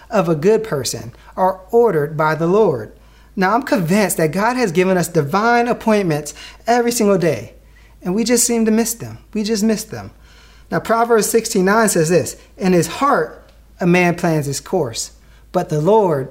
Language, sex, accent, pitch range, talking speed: English, male, American, 160-225 Hz, 180 wpm